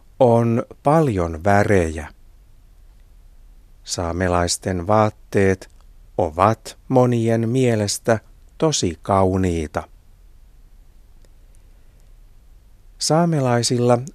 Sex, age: male, 60-79